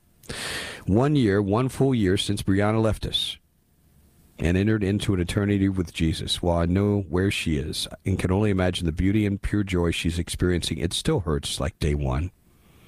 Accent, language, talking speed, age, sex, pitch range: American, English, 180 wpm, 50-69, male, 85-105 Hz